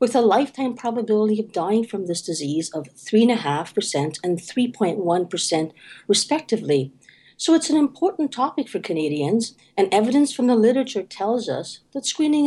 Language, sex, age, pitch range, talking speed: English, female, 50-69, 175-245 Hz, 145 wpm